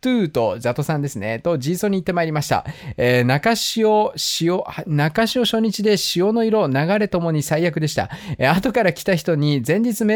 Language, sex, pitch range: Japanese, male, 145-215 Hz